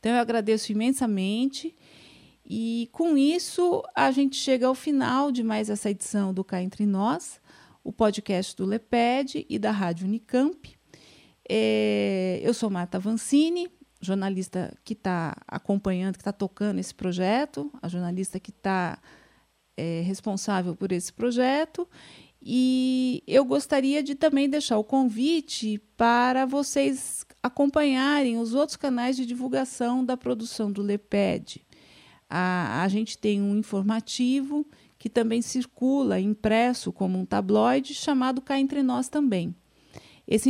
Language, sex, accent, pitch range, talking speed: Portuguese, female, Brazilian, 200-270 Hz, 130 wpm